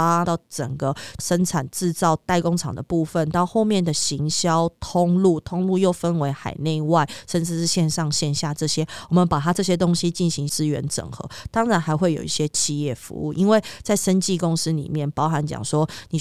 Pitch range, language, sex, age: 150-180 Hz, Chinese, female, 20-39